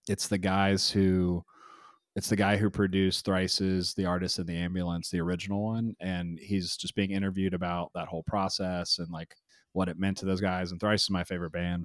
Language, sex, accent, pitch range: English, male, American, 85-100 Hz